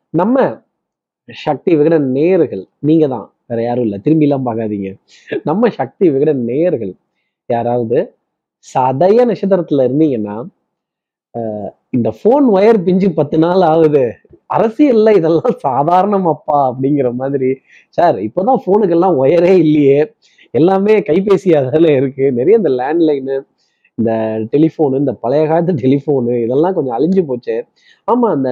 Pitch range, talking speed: 130-180 Hz, 115 wpm